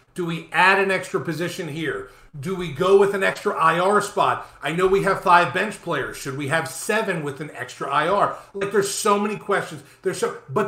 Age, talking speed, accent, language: 40-59, 215 wpm, American, English